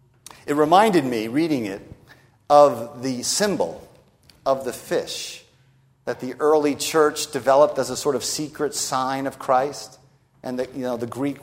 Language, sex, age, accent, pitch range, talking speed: English, male, 50-69, American, 130-185 Hz, 160 wpm